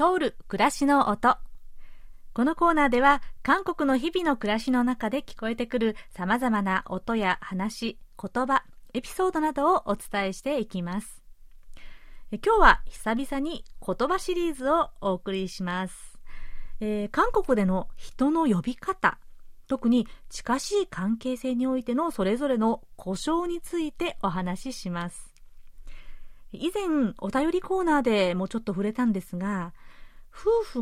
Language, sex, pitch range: Japanese, female, 200-285 Hz